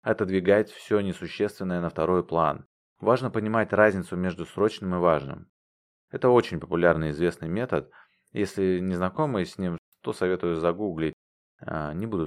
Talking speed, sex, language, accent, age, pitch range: 145 wpm, male, Russian, native, 30-49, 85-100 Hz